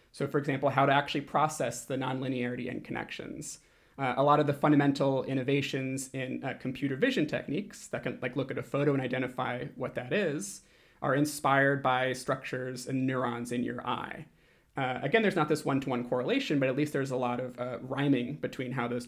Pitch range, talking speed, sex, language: 130-145 Hz, 200 wpm, male, English